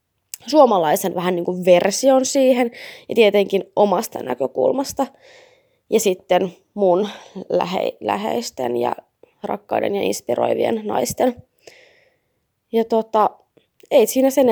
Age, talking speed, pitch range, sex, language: 20-39, 100 wpm, 185-235 Hz, female, Finnish